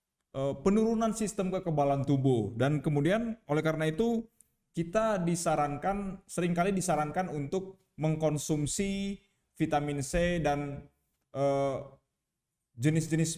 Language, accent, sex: Indonesian, native, male